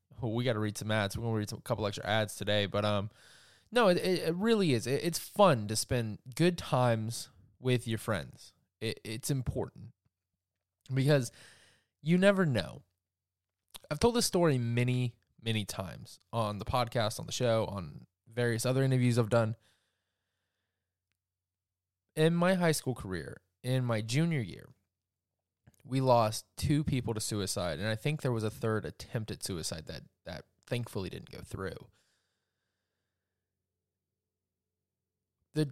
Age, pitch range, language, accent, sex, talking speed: 20-39, 95-125 Hz, English, American, male, 155 wpm